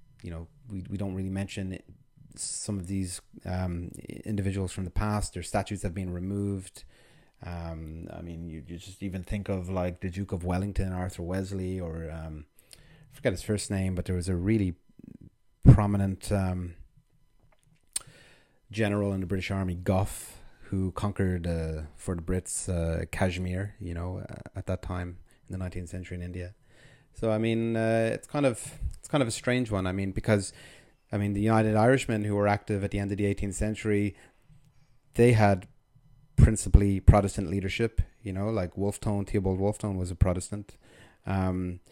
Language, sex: English, male